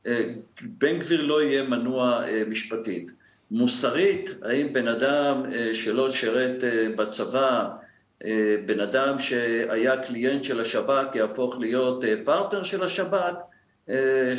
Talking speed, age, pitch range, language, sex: 100 wpm, 50-69, 110-140 Hz, Hebrew, male